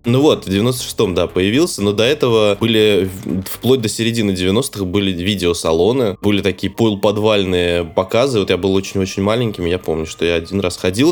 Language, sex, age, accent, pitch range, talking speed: Russian, male, 20-39, native, 95-115 Hz, 175 wpm